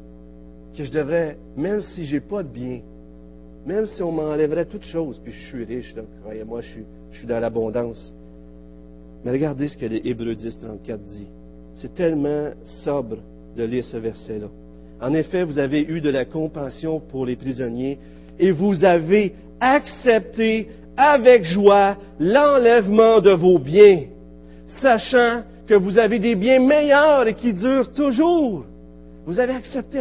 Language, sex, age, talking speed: French, male, 50-69, 155 wpm